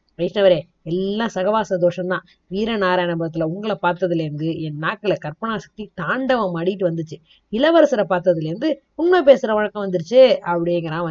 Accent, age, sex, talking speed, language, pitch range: native, 20-39, female, 120 wpm, Tamil, 175-220 Hz